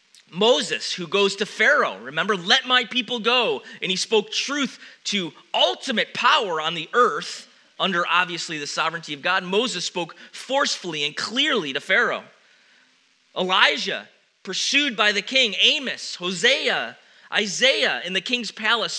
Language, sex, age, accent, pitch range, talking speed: English, male, 30-49, American, 190-240 Hz, 140 wpm